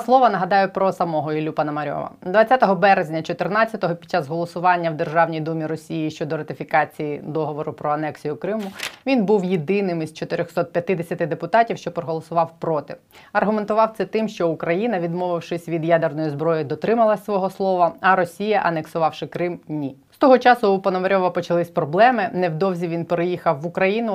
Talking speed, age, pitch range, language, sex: 155 wpm, 20-39, 155-190 Hz, Ukrainian, female